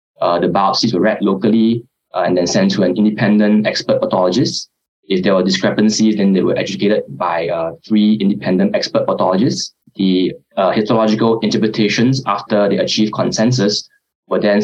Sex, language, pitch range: male, English, 100-115 Hz